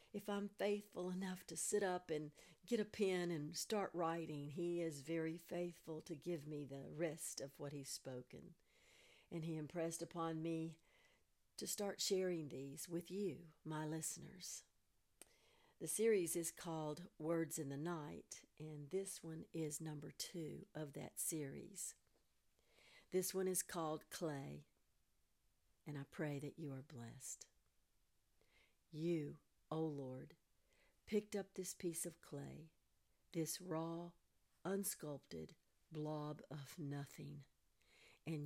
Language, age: English, 60-79